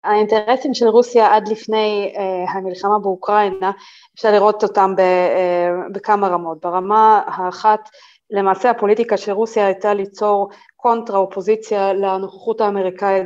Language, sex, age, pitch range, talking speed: Hebrew, female, 20-39, 195-220 Hz, 120 wpm